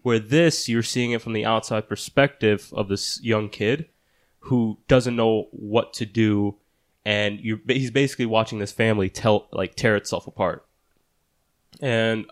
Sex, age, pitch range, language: male, 20-39, 100-115 Hz, English